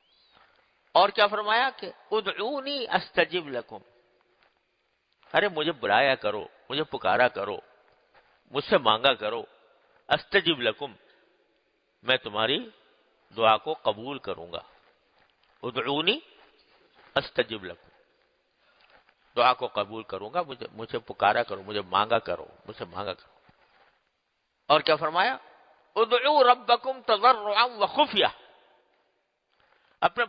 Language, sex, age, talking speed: Urdu, male, 50-69, 110 wpm